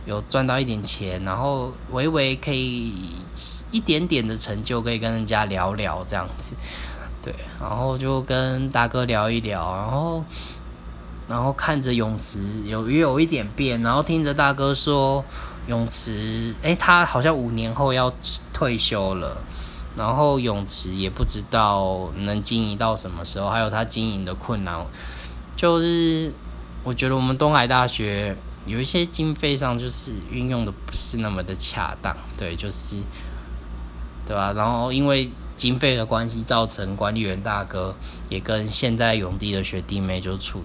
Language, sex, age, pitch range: Chinese, male, 20-39, 90-130 Hz